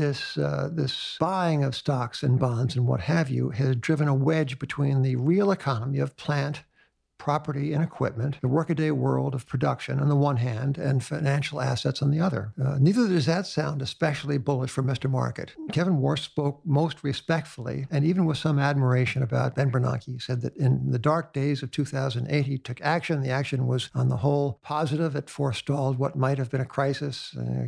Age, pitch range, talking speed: 60-79, 130-150 Hz, 195 wpm